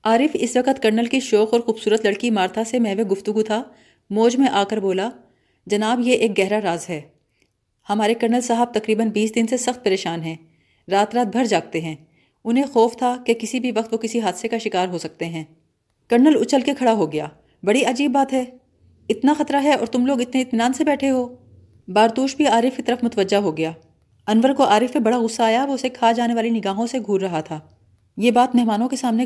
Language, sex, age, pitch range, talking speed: Urdu, female, 30-49, 195-250 Hz, 205 wpm